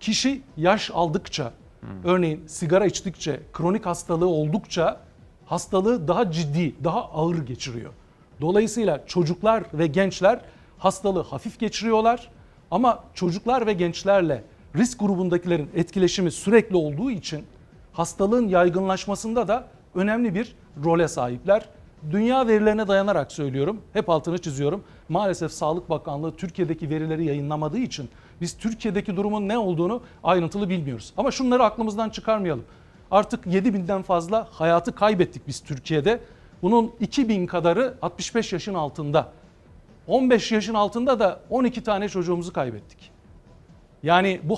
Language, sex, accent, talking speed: Turkish, male, native, 115 wpm